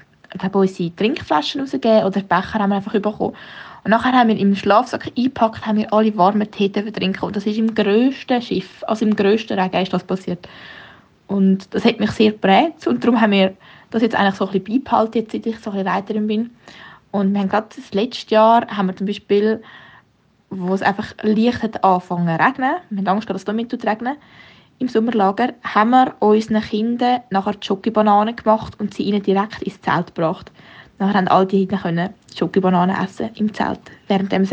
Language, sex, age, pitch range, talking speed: German, female, 20-39, 190-220 Hz, 200 wpm